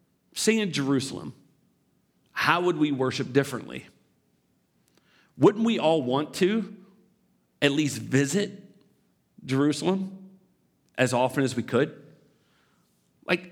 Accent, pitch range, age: American, 125-160 Hz, 40-59